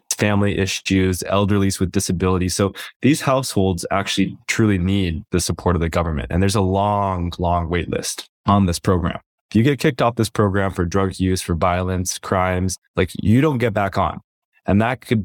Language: English